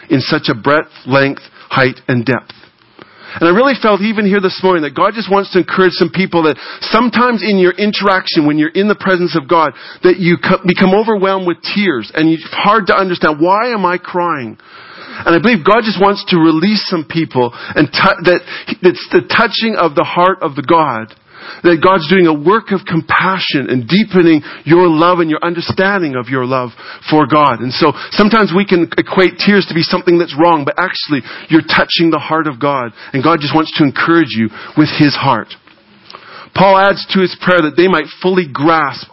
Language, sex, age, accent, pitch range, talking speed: English, male, 50-69, American, 155-190 Hz, 200 wpm